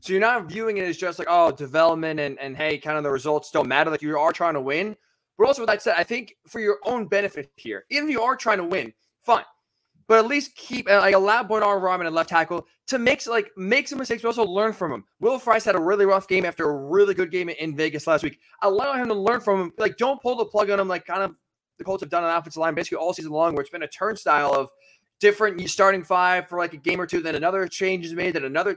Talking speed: 280 wpm